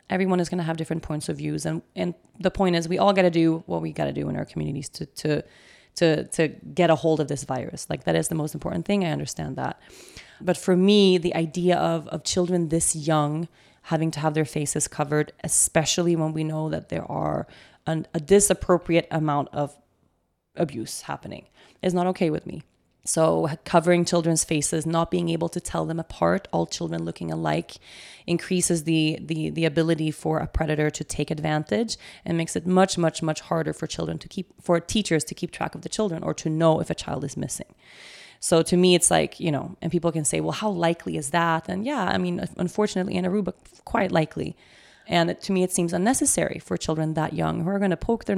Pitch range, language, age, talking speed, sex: 155-180 Hz, English, 20-39, 220 wpm, female